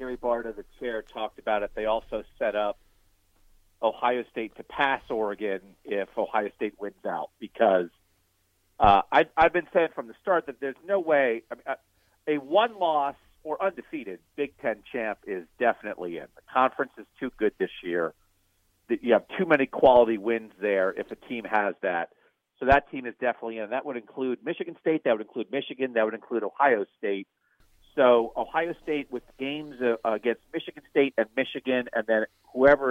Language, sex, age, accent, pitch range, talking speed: English, male, 50-69, American, 105-145 Hz, 175 wpm